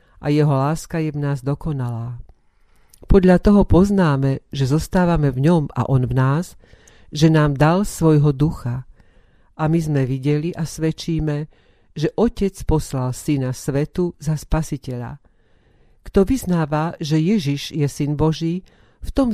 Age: 50-69